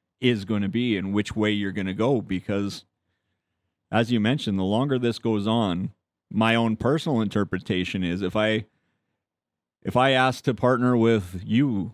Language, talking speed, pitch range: English, 170 wpm, 95-115 Hz